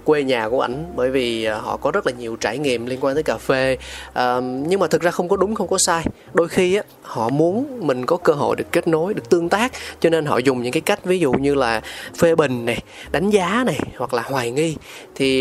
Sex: male